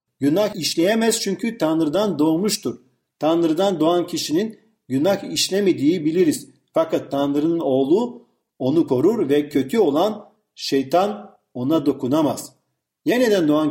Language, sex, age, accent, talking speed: Turkish, male, 50-69, native, 105 wpm